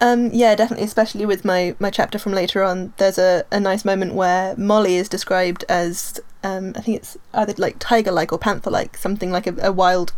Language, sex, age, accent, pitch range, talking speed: English, female, 20-39, British, 185-215 Hz, 220 wpm